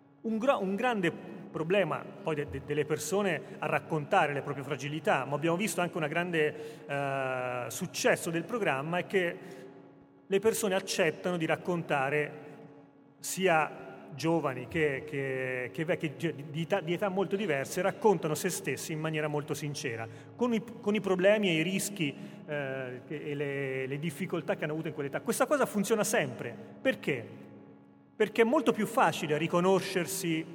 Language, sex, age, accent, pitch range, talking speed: Italian, male, 30-49, native, 145-190 Hz, 160 wpm